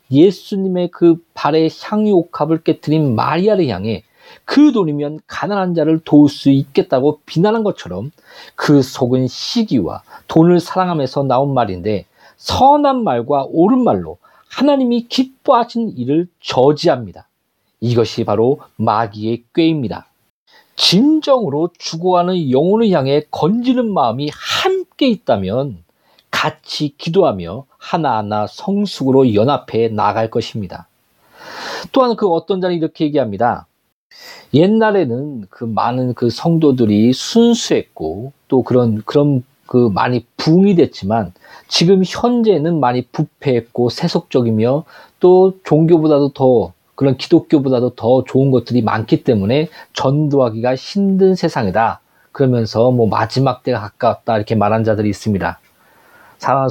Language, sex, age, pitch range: Korean, male, 40-59, 120-185 Hz